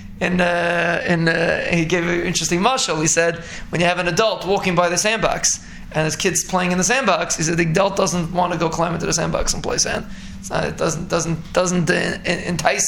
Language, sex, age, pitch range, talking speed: English, male, 20-39, 175-220 Hz, 230 wpm